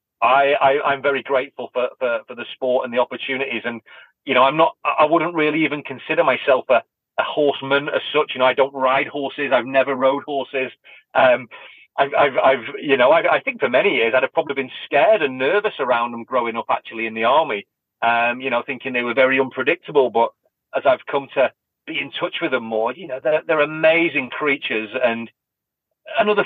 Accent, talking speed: British, 210 wpm